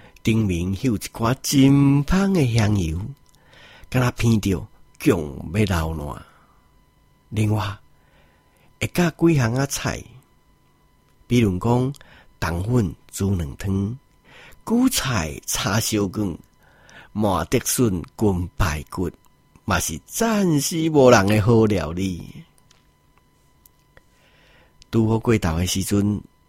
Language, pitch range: Chinese, 95-135 Hz